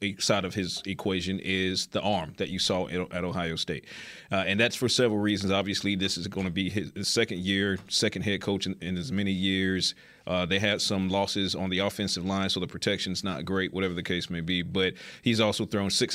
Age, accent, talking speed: 30-49, American, 225 wpm